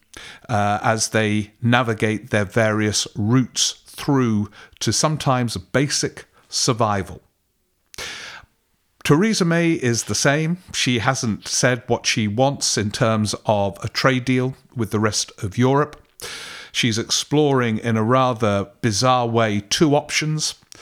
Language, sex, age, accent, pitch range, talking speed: English, male, 50-69, British, 105-145 Hz, 125 wpm